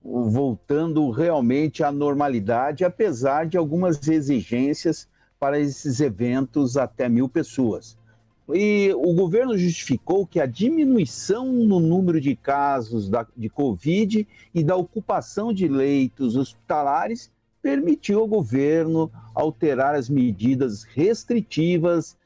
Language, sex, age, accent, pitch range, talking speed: Portuguese, male, 60-79, Brazilian, 130-180 Hz, 110 wpm